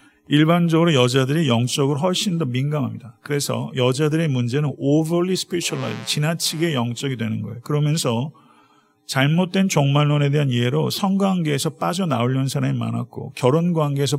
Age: 50-69